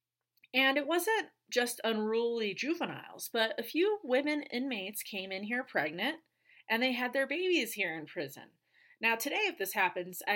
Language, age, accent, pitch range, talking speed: English, 30-49, American, 195-285 Hz, 160 wpm